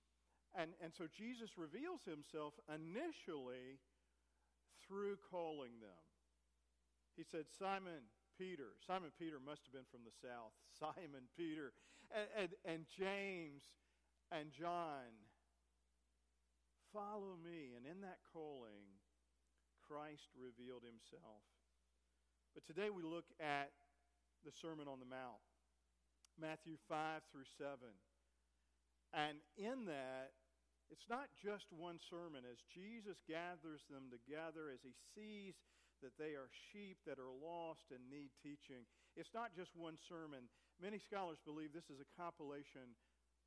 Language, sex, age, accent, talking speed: English, male, 50-69, American, 125 wpm